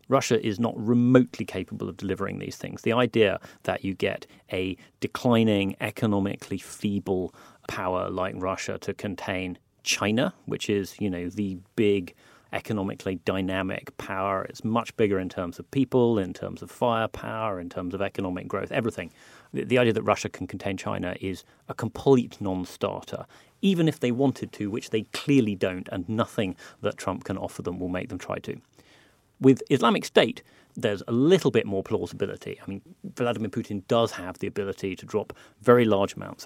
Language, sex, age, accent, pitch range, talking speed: English, male, 30-49, British, 95-115 Hz, 170 wpm